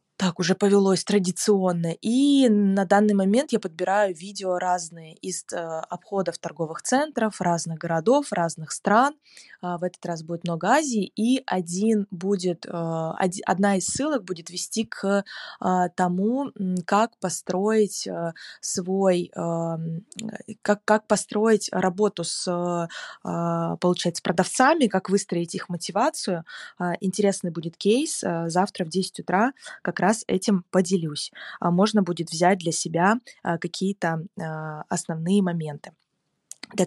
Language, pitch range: Russian, 175-215 Hz